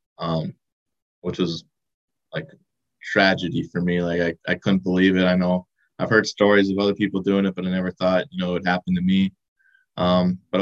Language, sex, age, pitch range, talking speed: English, male, 20-39, 90-95 Hz, 200 wpm